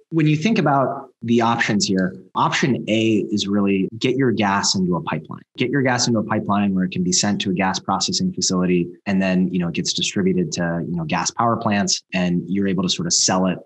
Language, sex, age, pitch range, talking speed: English, male, 20-39, 105-145 Hz, 235 wpm